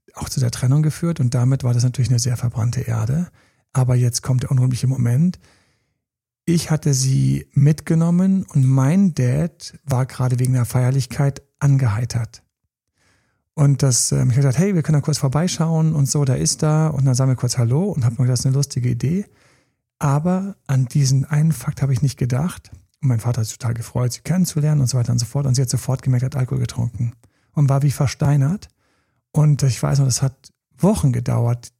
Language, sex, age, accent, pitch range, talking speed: German, male, 40-59, German, 125-150 Hz, 200 wpm